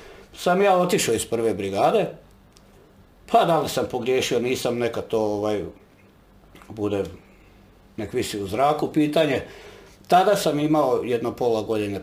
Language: Croatian